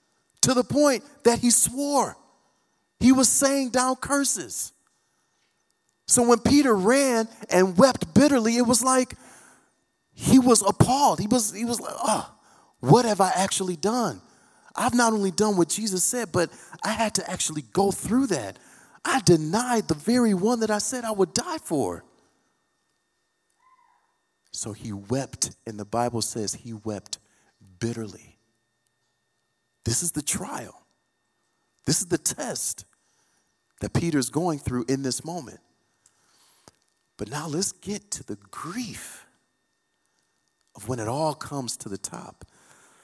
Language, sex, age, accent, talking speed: English, male, 40-59, American, 140 wpm